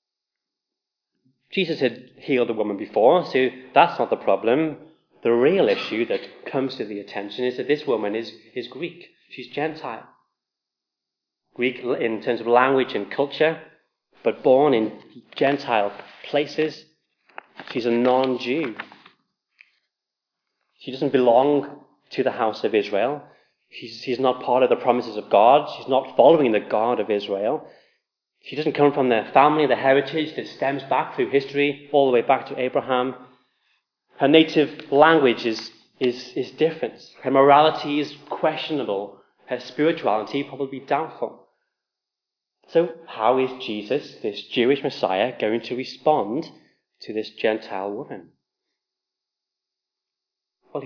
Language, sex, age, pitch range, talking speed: English, male, 30-49, 120-150 Hz, 135 wpm